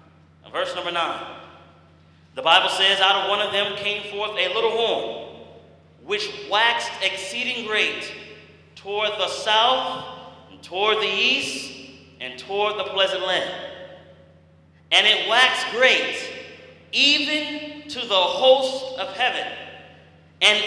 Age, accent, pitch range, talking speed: 40-59, American, 180-240 Hz, 120 wpm